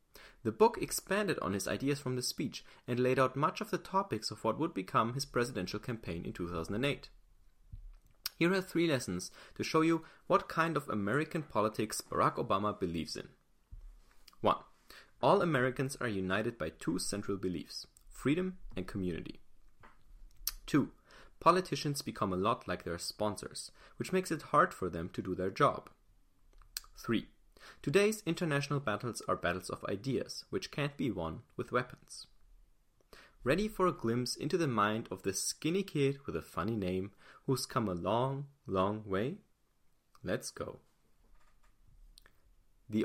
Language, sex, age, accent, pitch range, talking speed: English, male, 30-49, German, 100-155 Hz, 150 wpm